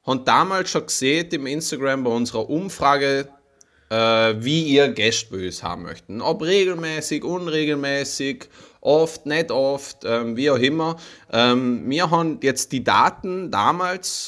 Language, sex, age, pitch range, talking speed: German, male, 20-39, 120-165 Hz, 145 wpm